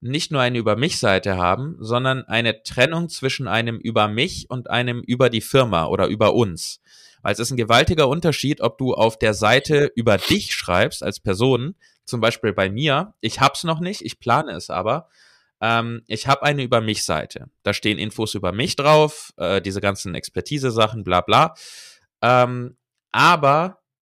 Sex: male